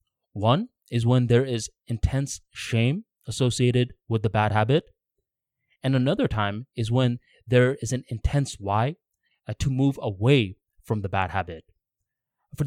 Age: 20-39